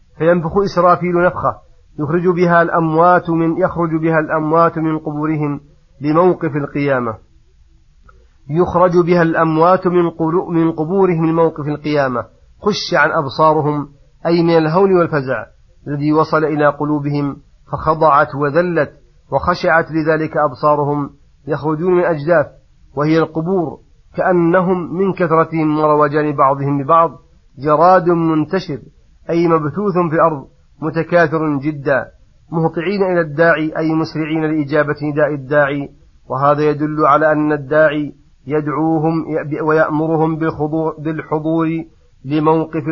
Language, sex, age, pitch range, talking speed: Arabic, male, 40-59, 145-165 Hz, 100 wpm